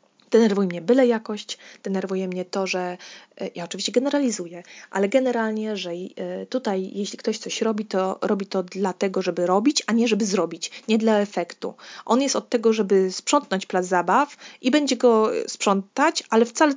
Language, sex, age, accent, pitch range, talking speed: Polish, female, 20-39, native, 195-255 Hz, 165 wpm